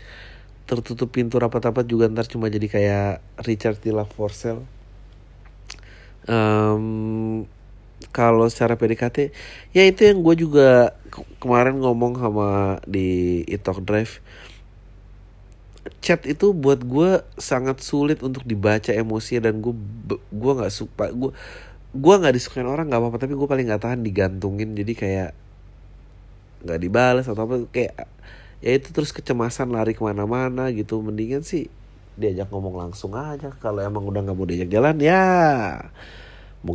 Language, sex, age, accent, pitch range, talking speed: Indonesian, male, 30-49, native, 100-125 Hz, 130 wpm